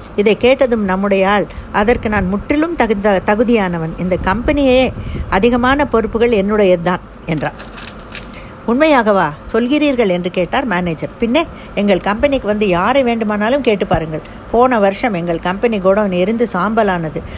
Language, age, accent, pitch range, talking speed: Tamil, 60-79, native, 180-235 Hz, 125 wpm